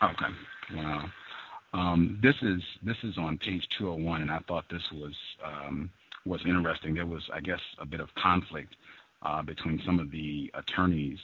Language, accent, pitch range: English, American, 80-110 Hz